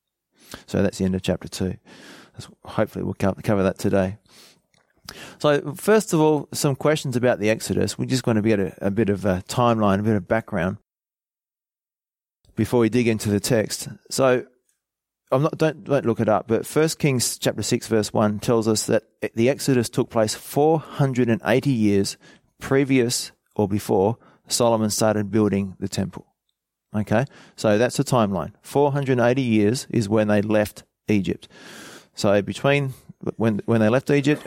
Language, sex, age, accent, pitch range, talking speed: English, male, 30-49, Australian, 100-135 Hz, 160 wpm